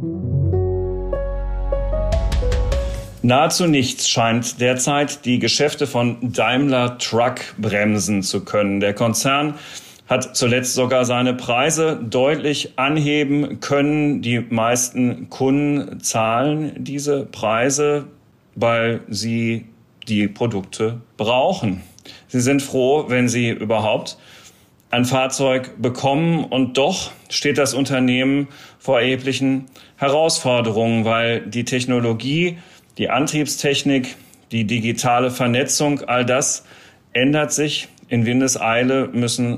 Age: 40-59